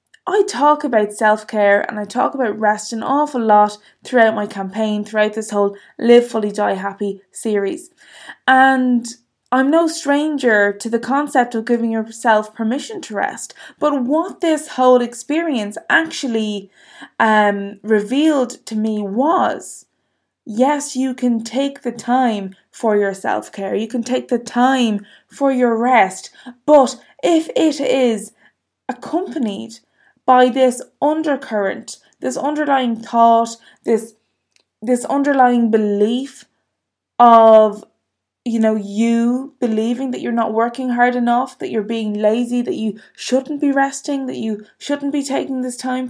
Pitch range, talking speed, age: 220-270 Hz, 140 wpm, 20-39